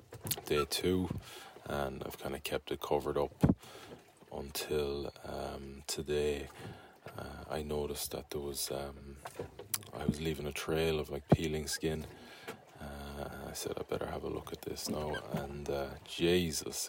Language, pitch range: English, 70-80 Hz